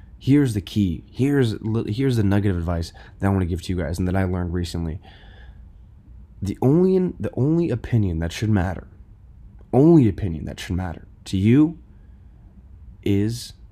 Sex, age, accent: male, 20-39, American